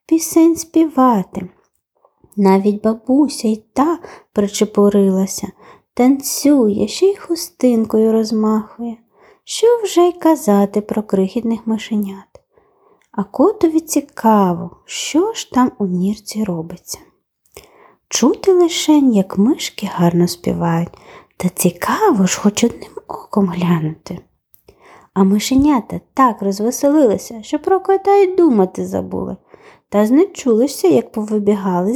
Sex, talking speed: female, 105 wpm